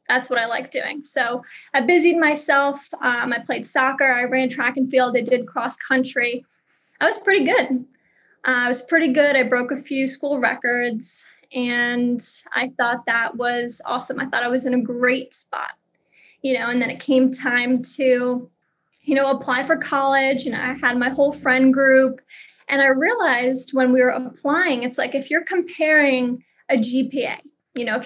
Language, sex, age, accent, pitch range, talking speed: English, female, 20-39, American, 250-280 Hz, 190 wpm